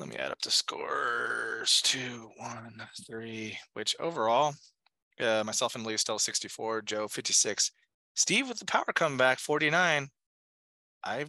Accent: American